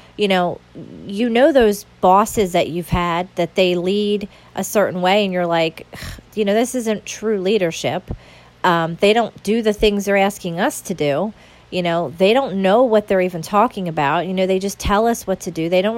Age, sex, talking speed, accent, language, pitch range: 40-59, female, 210 wpm, American, English, 175-215 Hz